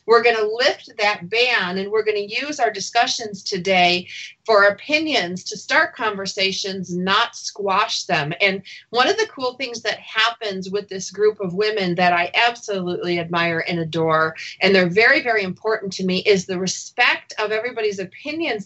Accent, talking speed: American, 175 wpm